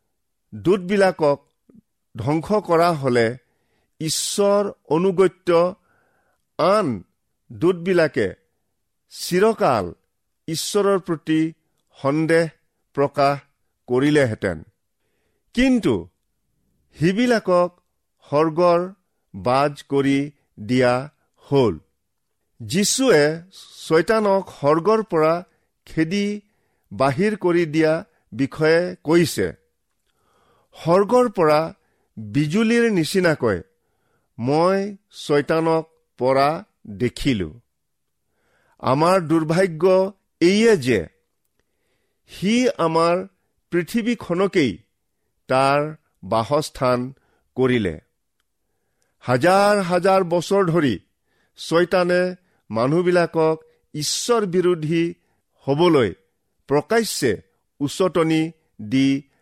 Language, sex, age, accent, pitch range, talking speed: Italian, male, 50-69, Indian, 140-185 Hz, 55 wpm